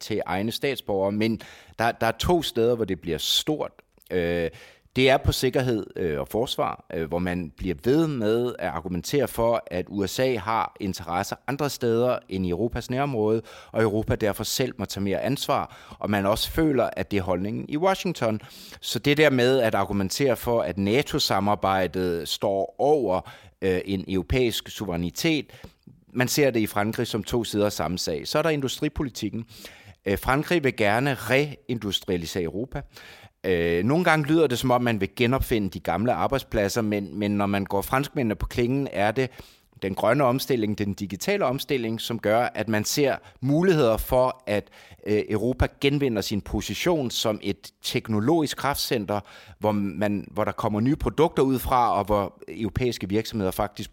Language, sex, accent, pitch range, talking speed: English, male, Danish, 100-130 Hz, 165 wpm